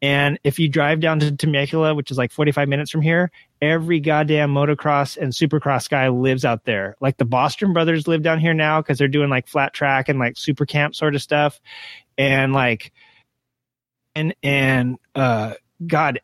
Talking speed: 185 wpm